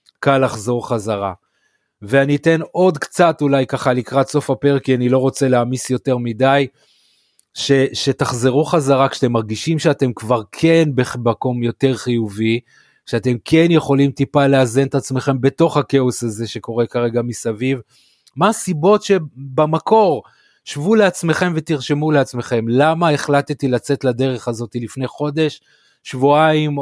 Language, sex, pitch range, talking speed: Hebrew, male, 120-150 Hz, 130 wpm